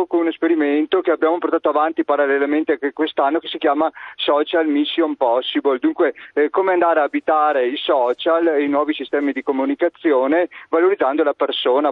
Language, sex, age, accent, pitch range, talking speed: Italian, male, 40-59, native, 140-175 Hz, 170 wpm